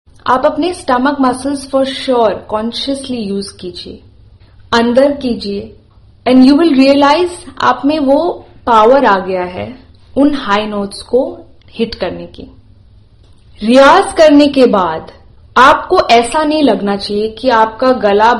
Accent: native